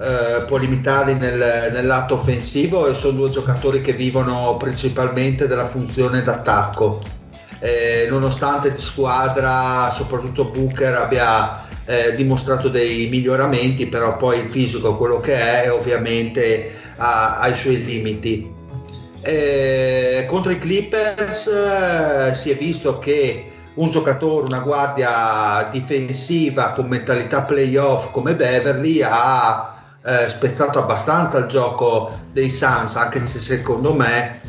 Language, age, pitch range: Italian, 40-59, 115-135 Hz